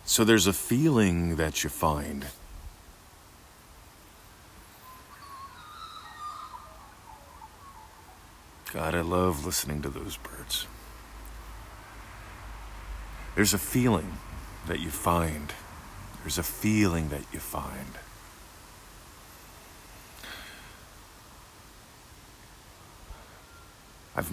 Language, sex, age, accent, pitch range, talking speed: English, male, 50-69, American, 80-100 Hz, 65 wpm